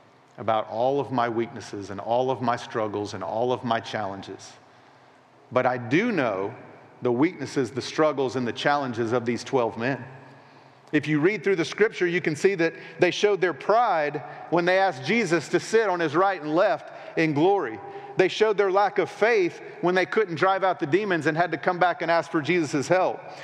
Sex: male